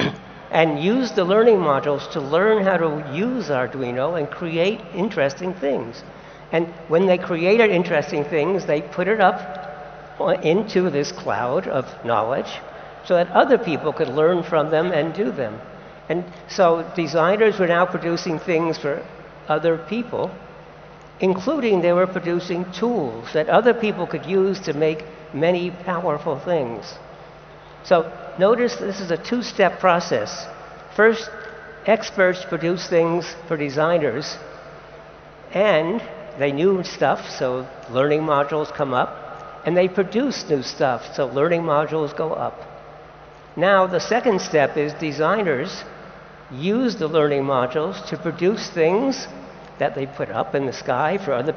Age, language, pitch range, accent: 60-79, Chinese, 155-195 Hz, American